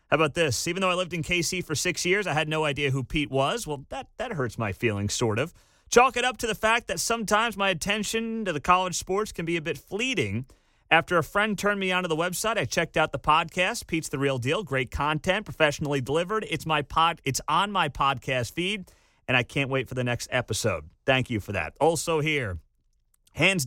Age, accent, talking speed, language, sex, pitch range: 30-49, American, 230 wpm, English, male, 130-175 Hz